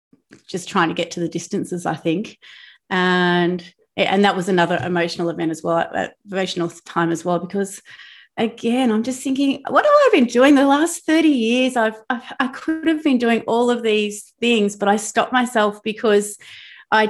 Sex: female